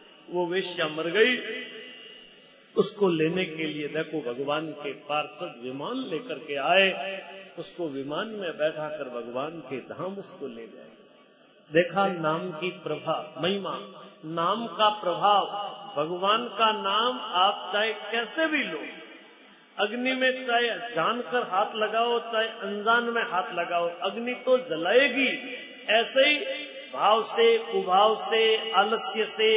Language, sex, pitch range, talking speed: Hindi, male, 170-235 Hz, 130 wpm